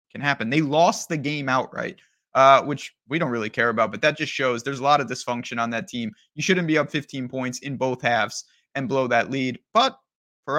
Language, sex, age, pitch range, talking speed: English, male, 20-39, 125-155 Hz, 230 wpm